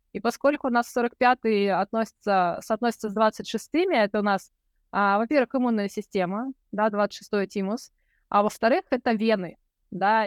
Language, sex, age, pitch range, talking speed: Russian, female, 20-39, 210-260 Hz, 130 wpm